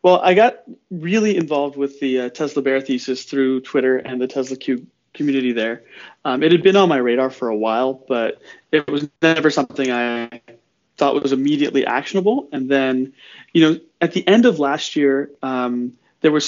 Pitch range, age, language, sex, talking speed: 130-160 Hz, 30-49, English, male, 190 wpm